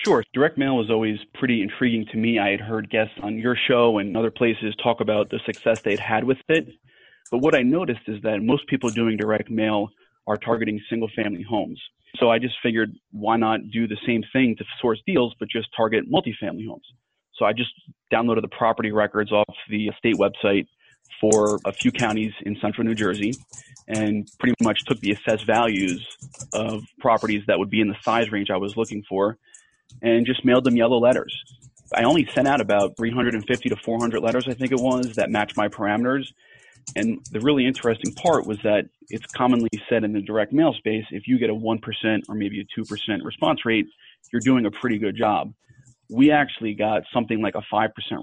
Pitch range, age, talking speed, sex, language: 105-125 Hz, 30-49, 205 wpm, male, English